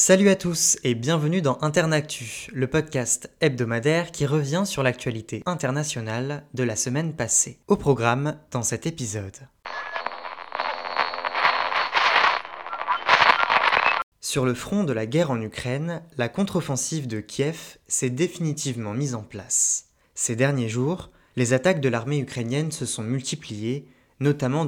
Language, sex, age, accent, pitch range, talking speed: French, male, 20-39, French, 120-155 Hz, 130 wpm